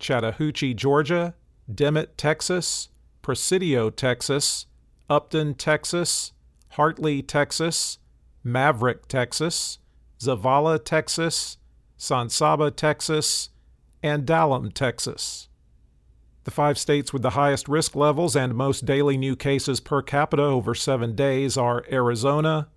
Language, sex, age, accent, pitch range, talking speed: English, male, 50-69, American, 120-150 Hz, 105 wpm